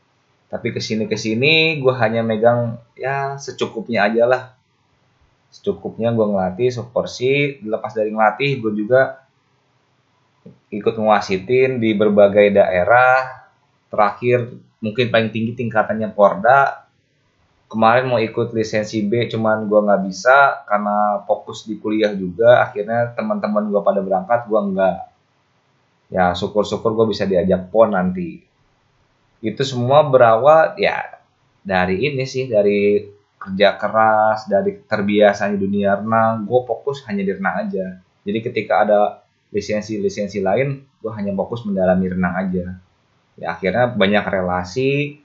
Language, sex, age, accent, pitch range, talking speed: Indonesian, male, 20-39, native, 100-130 Hz, 125 wpm